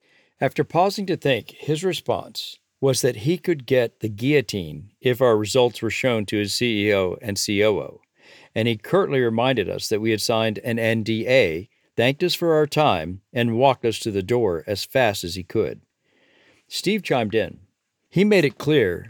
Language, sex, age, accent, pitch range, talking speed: English, male, 50-69, American, 110-140 Hz, 180 wpm